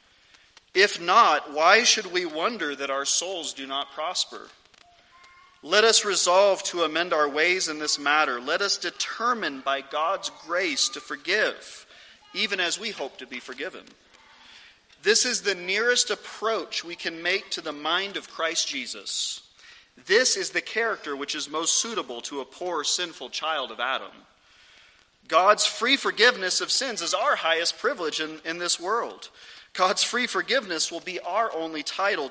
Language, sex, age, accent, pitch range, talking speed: English, male, 40-59, American, 135-205 Hz, 160 wpm